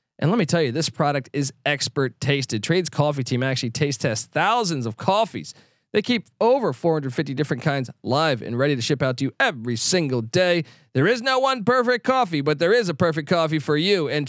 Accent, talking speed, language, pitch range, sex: American, 215 wpm, English, 130-170 Hz, male